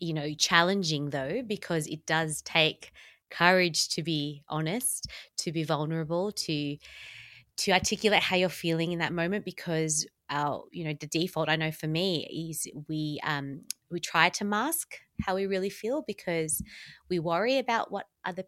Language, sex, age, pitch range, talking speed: English, female, 20-39, 150-190 Hz, 165 wpm